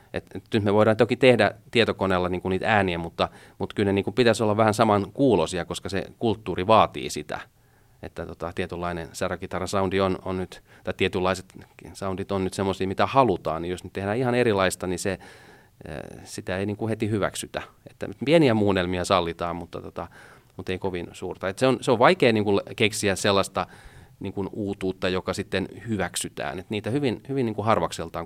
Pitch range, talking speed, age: 90-110 Hz, 180 wpm, 30-49